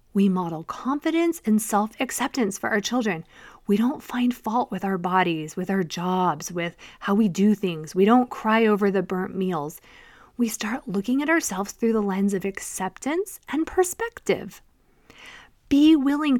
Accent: American